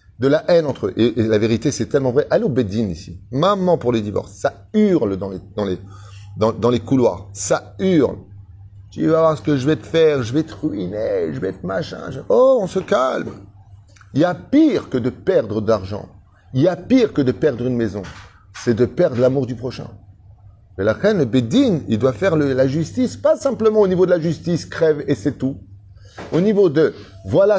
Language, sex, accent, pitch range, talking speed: French, male, French, 100-160 Hz, 220 wpm